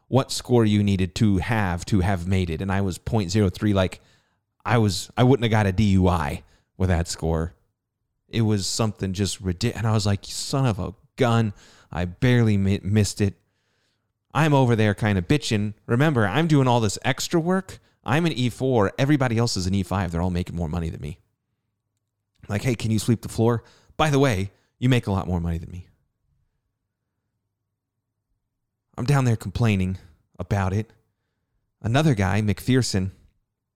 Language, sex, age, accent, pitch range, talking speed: English, male, 30-49, American, 95-120 Hz, 175 wpm